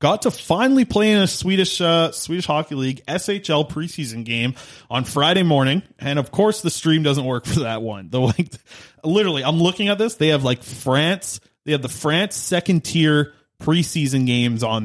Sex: male